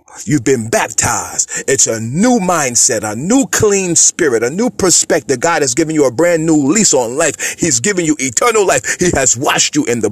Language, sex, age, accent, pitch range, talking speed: English, male, 40-59, American, 140-195 Hz, 210 wpm